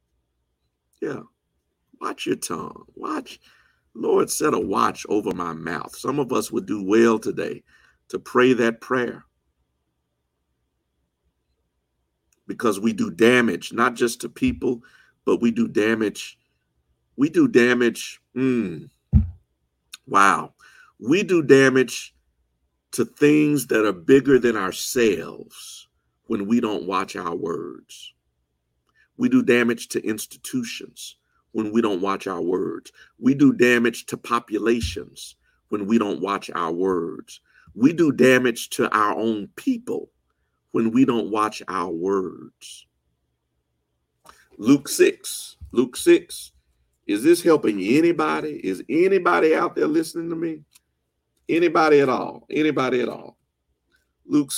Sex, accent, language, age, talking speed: male, American, English, 50-69, 125 wpm